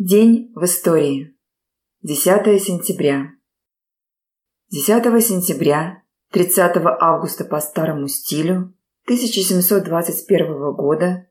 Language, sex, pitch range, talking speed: Russian, female, 155-200 Hz, 75 wpm